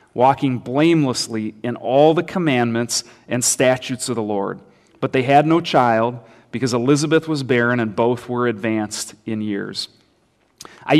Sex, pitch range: male, 125-145 Hz